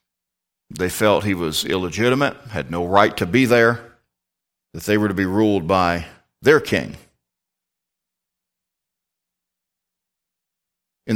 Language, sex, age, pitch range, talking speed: English, male, 50-69, 100-140 Hz, 115 wpm